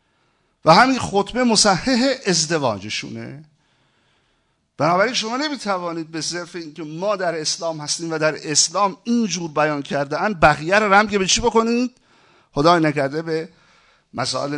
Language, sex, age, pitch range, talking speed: Persian, male, 50-69, 155-215 Hz, 130 wpm